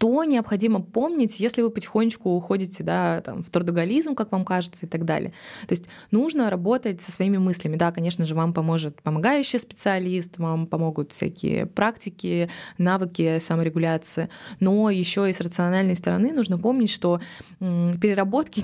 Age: 20-39